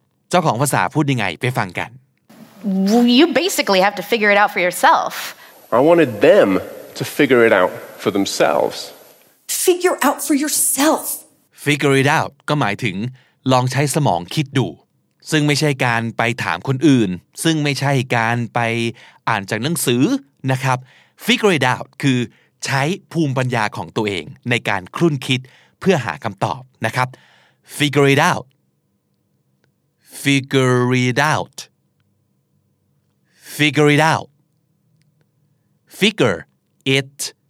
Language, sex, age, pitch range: Thai, male, 30-49, 125-160 Hz